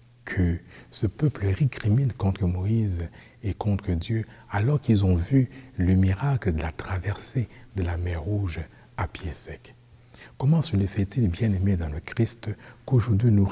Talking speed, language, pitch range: 160 wpm, French, 95-120 Hz